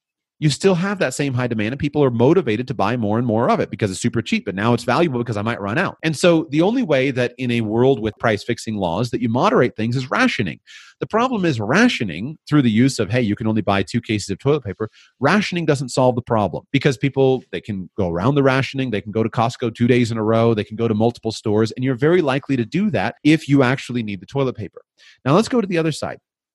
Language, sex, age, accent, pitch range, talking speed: English, male, 30-49, American, 110-150 Hz, 265 wpm